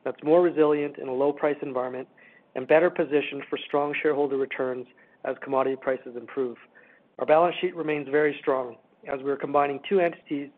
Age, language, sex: 50-69, English, male